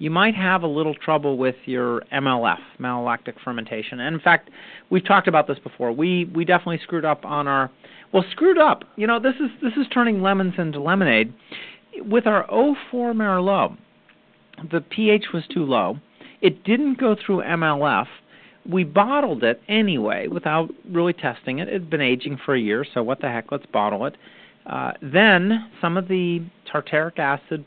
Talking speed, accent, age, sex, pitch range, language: 180 wpm, American, 40-59, male, 145-195 Hz, English